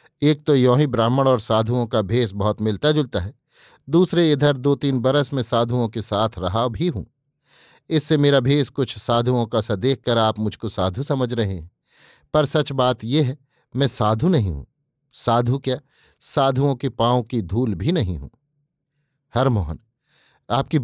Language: Hindi